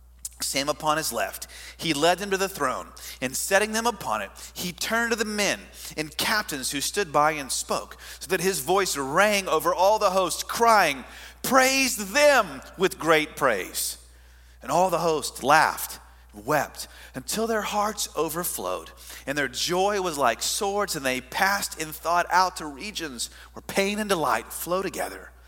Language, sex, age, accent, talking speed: English, male, 40-59, American, 170 wpm